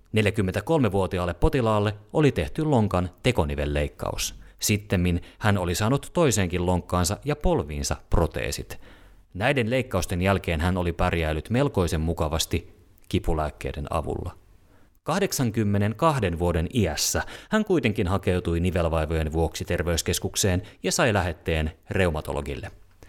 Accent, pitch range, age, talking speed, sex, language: native, 85-110 Hz, 30-49, 100 wpm, male, Finnish